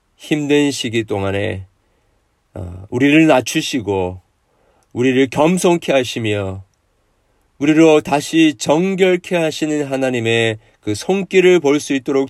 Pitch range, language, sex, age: 100-130 Hz, Korean, male, 40-59